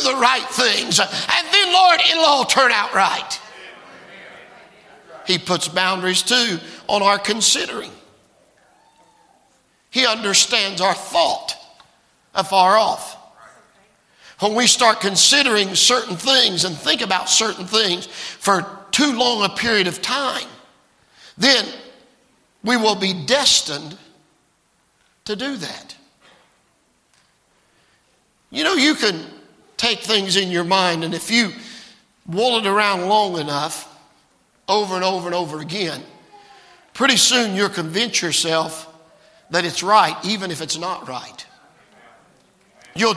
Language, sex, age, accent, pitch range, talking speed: English, male, 50-69, American, 185-255 Hz, 120 wpm